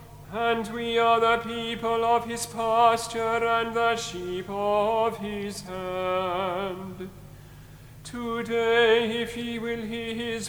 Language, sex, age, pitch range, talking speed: English, male, 40-59, 190-230 Hz, 115 wpm